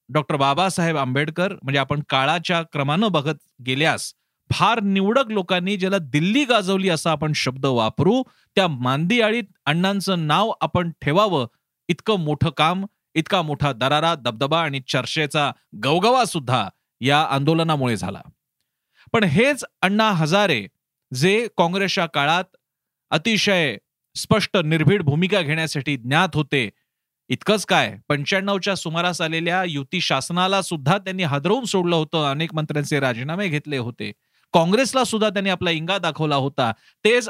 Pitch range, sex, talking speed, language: 145-195 Hz, male, 115 wpm, Marathi